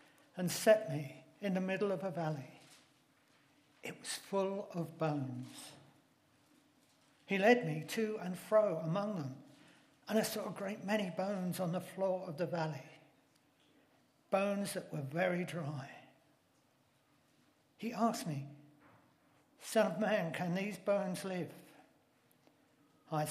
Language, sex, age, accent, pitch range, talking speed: English, male, 60-79, British, 155-200 Hz, 130 wpm